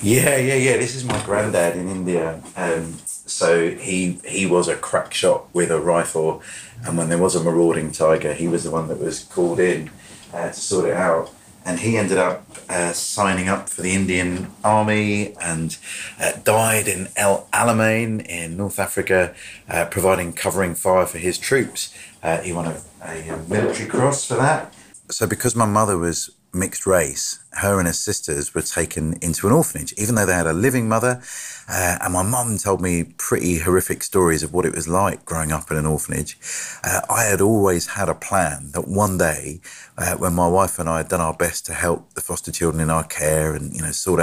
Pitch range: 85-105 Hz